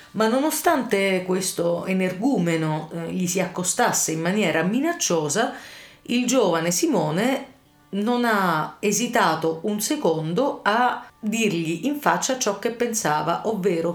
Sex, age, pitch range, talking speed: female, 40-59, 165-225 Hz, 110 wpm